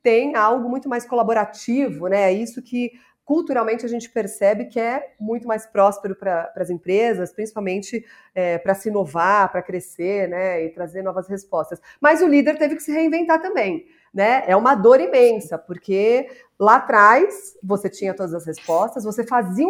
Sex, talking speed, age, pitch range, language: female, 165 wpm, 40-59, 195-280 Hz, Portuguese